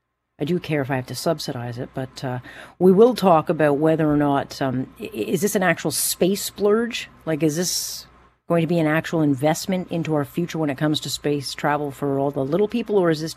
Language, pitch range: English, 145-205 Hz